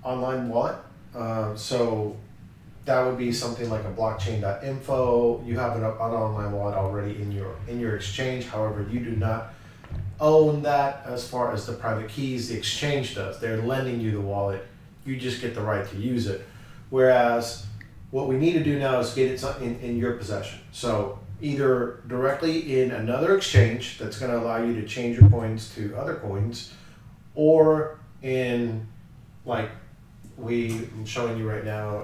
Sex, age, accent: male, 30-49, American